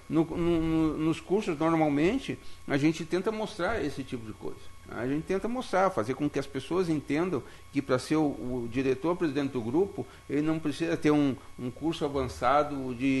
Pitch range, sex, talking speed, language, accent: 120-155 Hz, male, 175 wpm, Portuguese, Brazilian